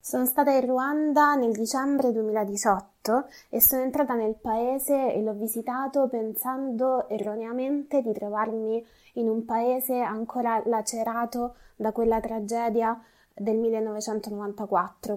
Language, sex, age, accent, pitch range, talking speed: Italian, female, 20-39, native, 210-245 Hz, 115 wpm